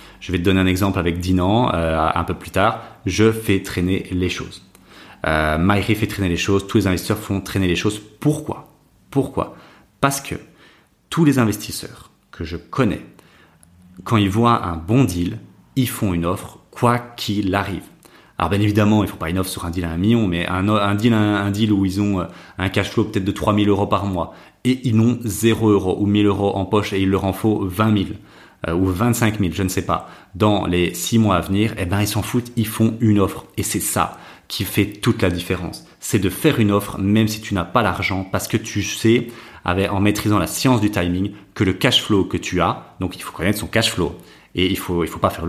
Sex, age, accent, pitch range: male, 30-49, French, 90-110 Hz